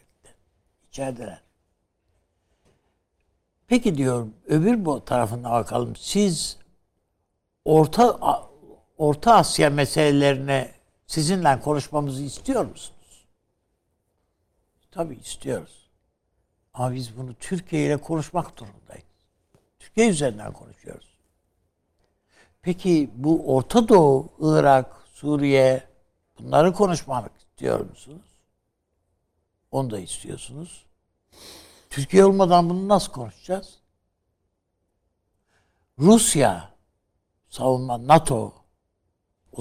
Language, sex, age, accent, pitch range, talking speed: Turkish, male, 60-79, native, 90-150 Hz, 75 wpm